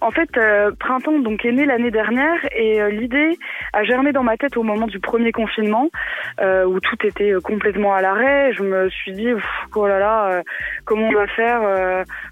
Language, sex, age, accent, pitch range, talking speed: French, female, 20-39, French, 210-270 Hz, 205 wpm